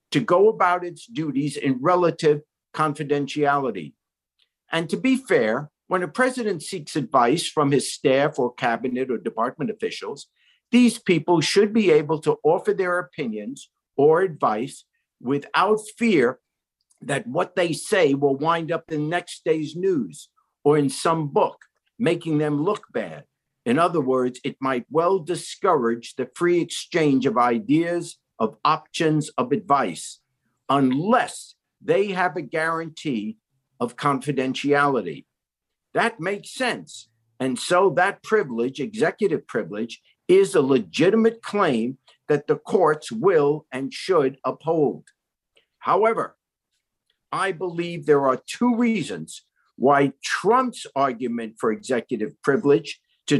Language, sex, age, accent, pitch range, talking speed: English, male, 50-69, American, 135-190 Hz, 130 wpm